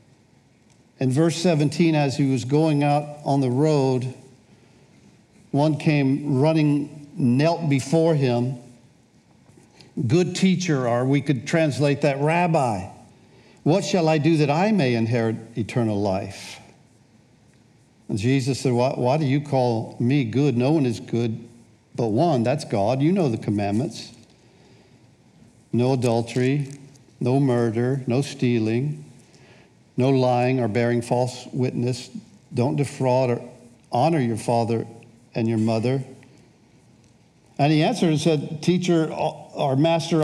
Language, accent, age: English, American, 60-79